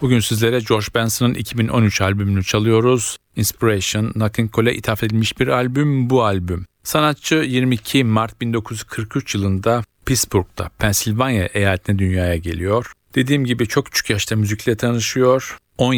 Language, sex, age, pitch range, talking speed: Turkish, male, 50-69, 100-125 Hz, 130 wpm